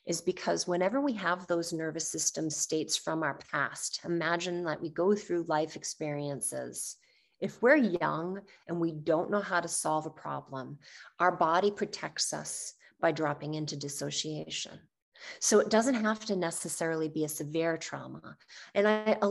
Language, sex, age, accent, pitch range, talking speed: English, female, 30-49, American, 165-220 Hz, 160 wpm